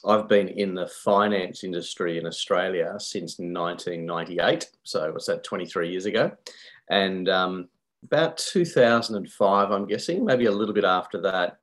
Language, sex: English, male